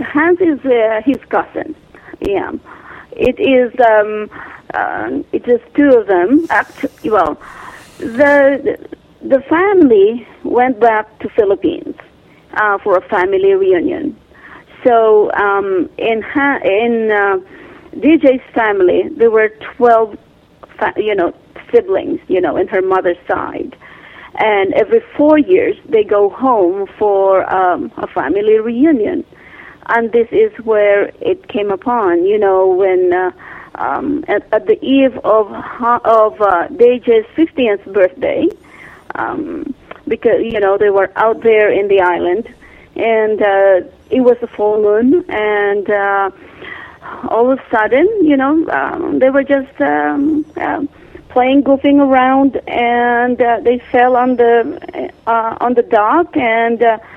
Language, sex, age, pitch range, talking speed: English, female, 40-59, 215-325 Hz, 135 wpm